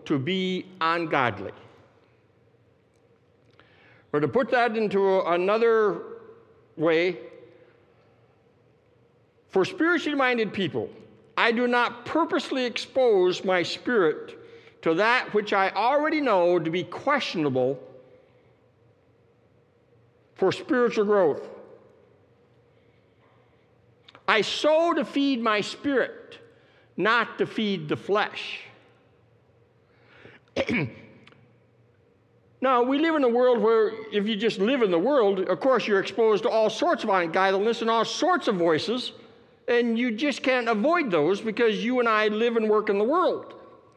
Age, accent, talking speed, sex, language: 60-79, American, 120 wpm, male, English